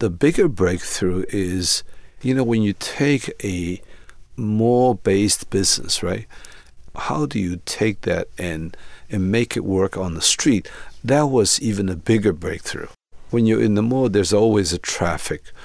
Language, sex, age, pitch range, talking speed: English, male, 50-69, 95-110 Hz, 155 wpm